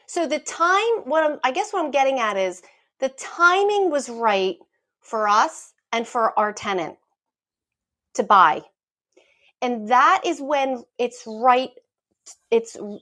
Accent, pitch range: American, 220-295 Hz